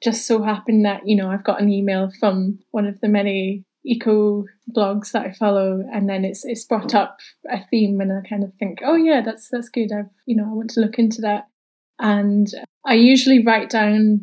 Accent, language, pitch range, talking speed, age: British, English, 205-230 Hz, 220 wpm, 10-29